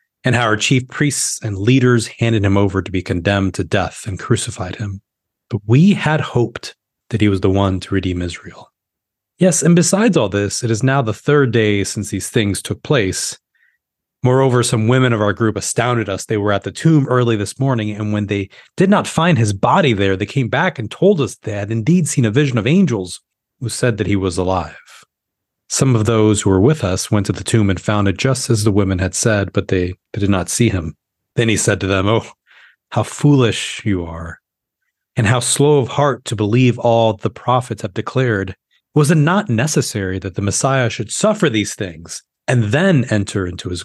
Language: English